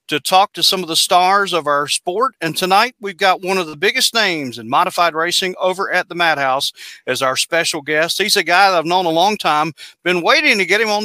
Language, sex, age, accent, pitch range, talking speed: English, male, 40-59, American, 155-190 Hz, 245 wpm